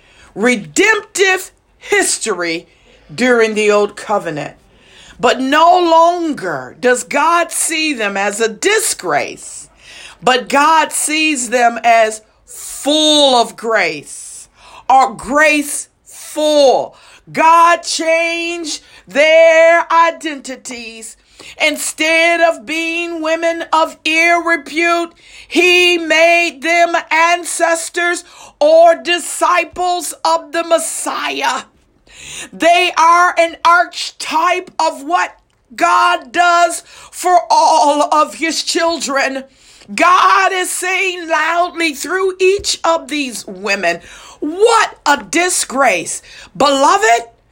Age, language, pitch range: 50-69, English, 280-345 Hz